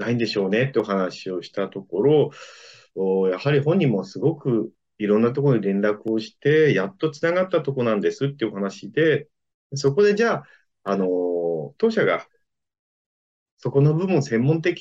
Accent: native